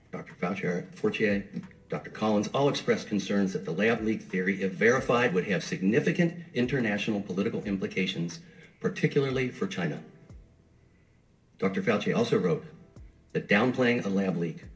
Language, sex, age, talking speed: English, male, 50-69, 135 wpm